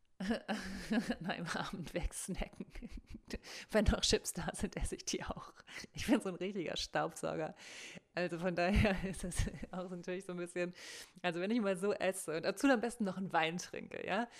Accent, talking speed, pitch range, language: German, 185 wpm, 175-215 Hz, German